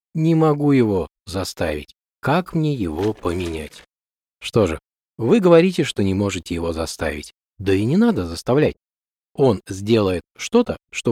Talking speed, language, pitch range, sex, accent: 140 wpm, Russian, 90-140 Hz, male, native